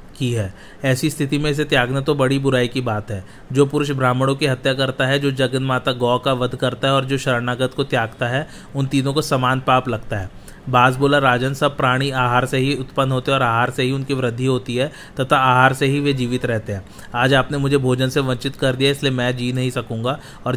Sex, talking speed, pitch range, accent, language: male, 235 wpm, 125-140 Hz, native, Hindi